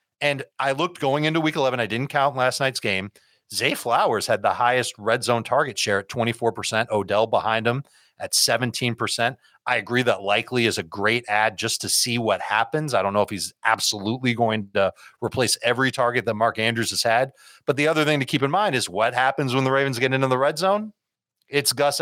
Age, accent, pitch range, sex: 30-49, American, 110-140 Hz, male